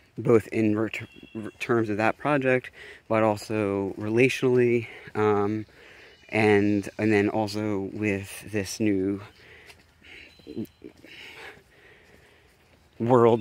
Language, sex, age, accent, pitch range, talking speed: English, male, 30-49, American, 105-120 Hz, 85 wpm